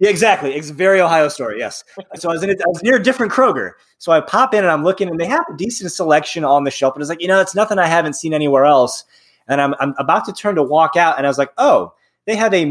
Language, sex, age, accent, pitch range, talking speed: English, male, 20-39, American, 130-185 Hz, 285 wpm